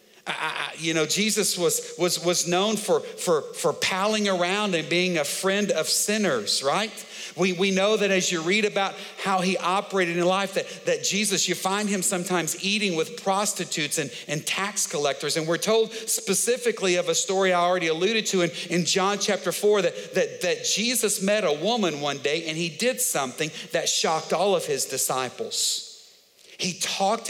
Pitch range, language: 170-215 Hz, English